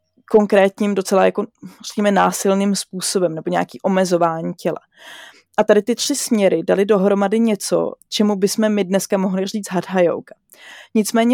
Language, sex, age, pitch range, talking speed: Slovak, female, 20-39, 180-205 Hz, 145 wpm